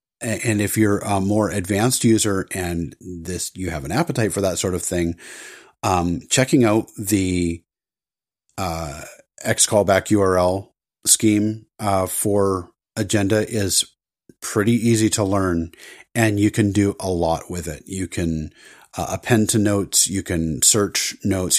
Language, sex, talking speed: English, male, 145 wpm